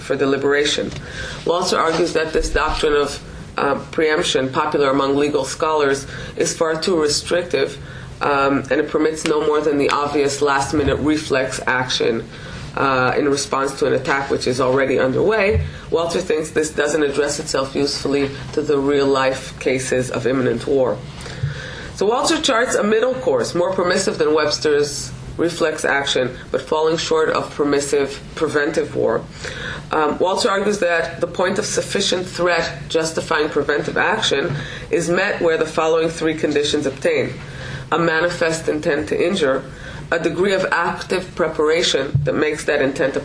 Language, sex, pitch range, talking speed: English, female, 140-170 Hz, 155 wpm